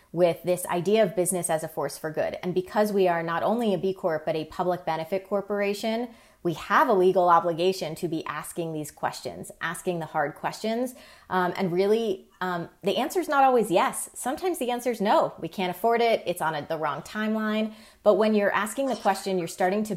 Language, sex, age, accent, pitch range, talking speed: English, female, 30-49, American, 165-210 Hz, 215 wpm